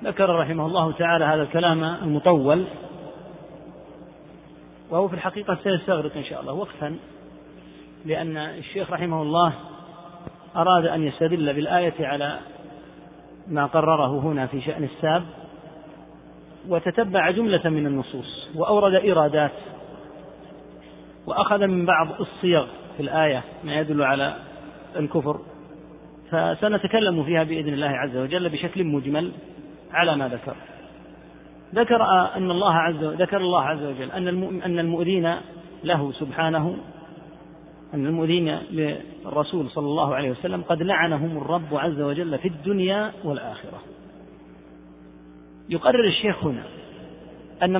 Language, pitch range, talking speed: Arabic, 145-180 Hz, 110 wpm